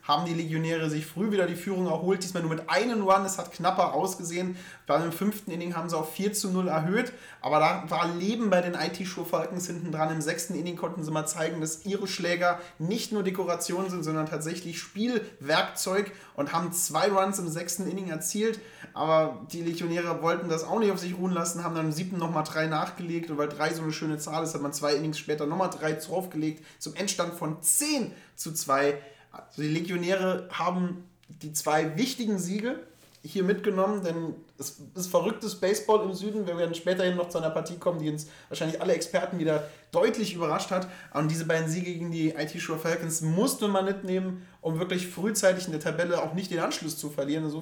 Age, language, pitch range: 30-49, German, 160-185 Hz